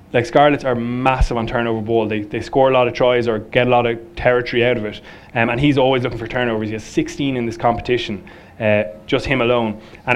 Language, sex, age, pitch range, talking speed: English, male, 20-39, 115-130 Hz, 240 wpm